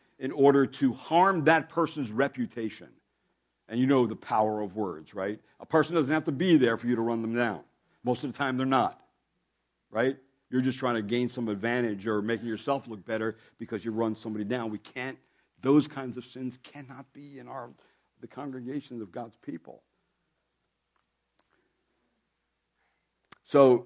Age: 60-79